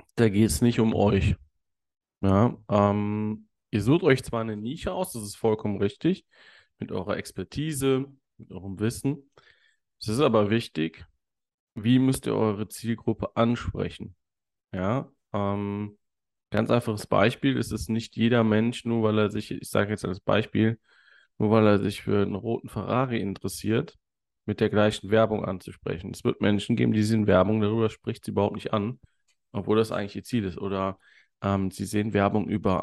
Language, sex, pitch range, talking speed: German, male, 100-120 Hz, 170 wpm